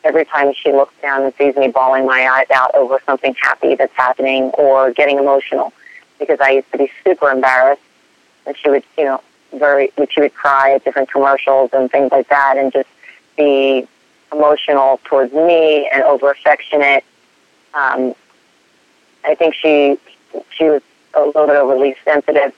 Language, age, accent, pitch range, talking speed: English, 40-59, American, 135-150 Hz, 165 wpm